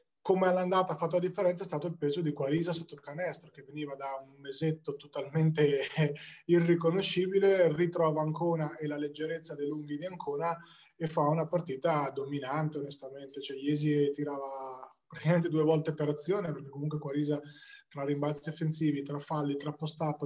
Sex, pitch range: male, 145-170 Hz